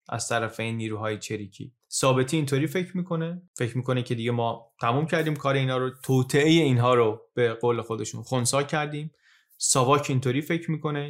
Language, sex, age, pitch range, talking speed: Persian, male, 30-49, 115-150 Hz, 170 wpm